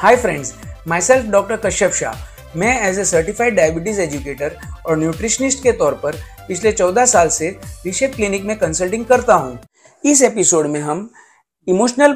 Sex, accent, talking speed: male, native, 160 wpm